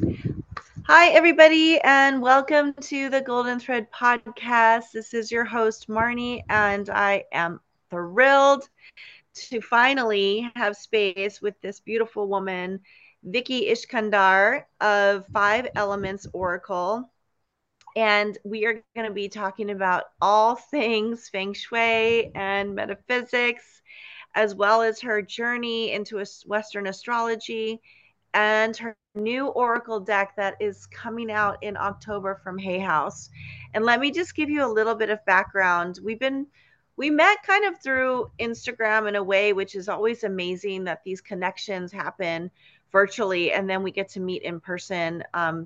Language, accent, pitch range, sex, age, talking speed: English, American, 195-240 Hz, female, 30-49, 145 wpm